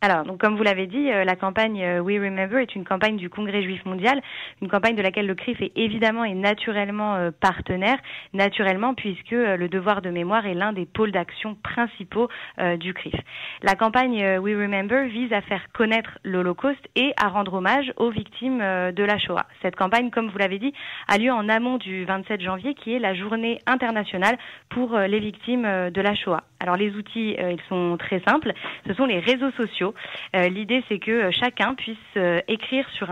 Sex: female